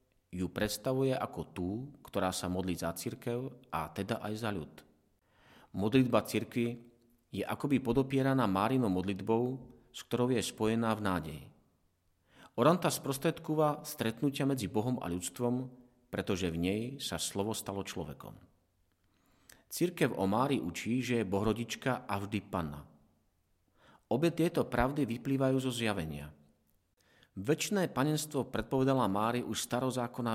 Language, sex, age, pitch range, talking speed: Slovak, male, 40-59, 95-130 Hz, 125 wpm